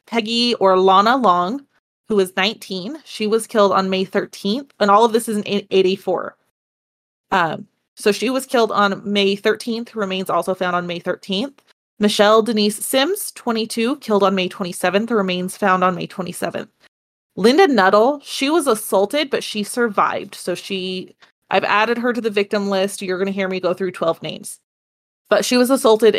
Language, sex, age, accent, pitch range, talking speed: English, female, 30-49, American, 190-230 Hz, 175 wpm